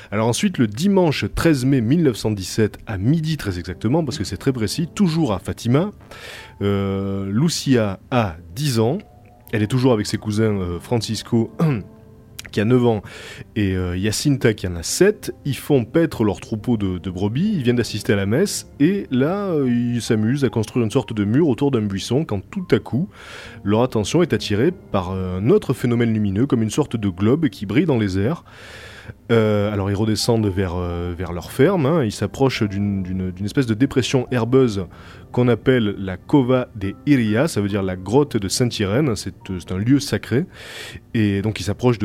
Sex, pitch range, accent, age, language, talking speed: male, 100-135 Hz, French, 20-39, French, 195 wpm